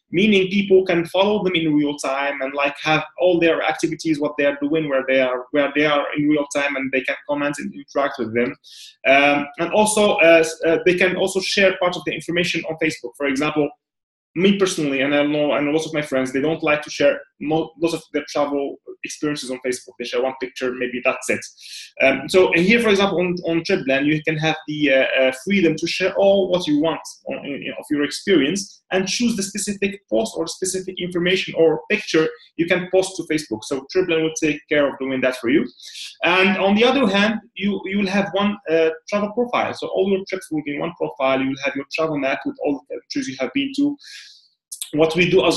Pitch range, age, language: 145-185 Hz, 20-39, English